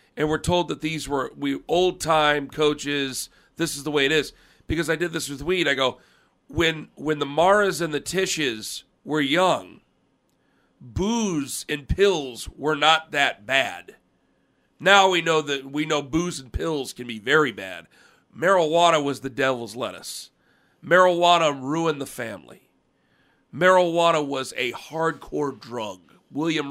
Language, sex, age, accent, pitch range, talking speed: English, male, 40-59, American, 140-165 Hz, 155 wpm